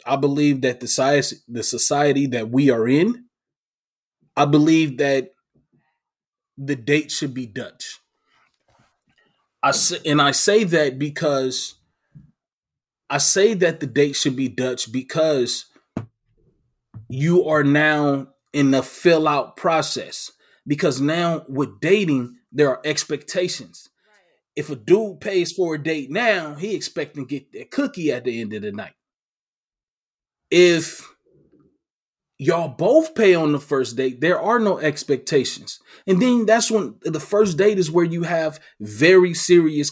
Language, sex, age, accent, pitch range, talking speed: English, male, 20-39, American, 140-210 Hz, 140 wpm